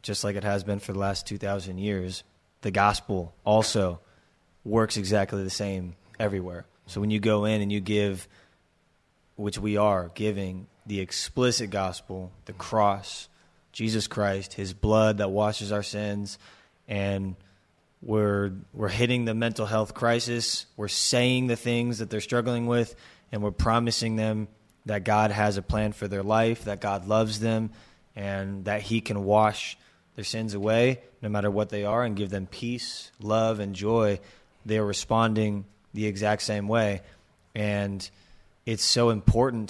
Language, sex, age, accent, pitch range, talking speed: English, male, 20-39, American, 100-115 Hz, 160 wpm